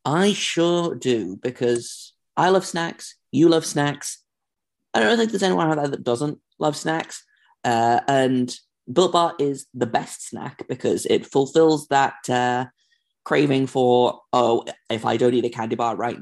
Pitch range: 120-155 Hz